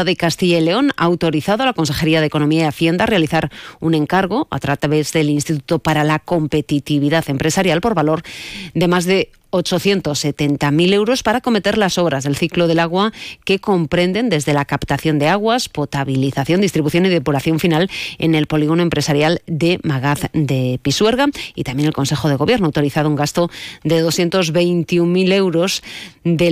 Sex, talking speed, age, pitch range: female, 170 wpm, 30-49, 145-180 Hz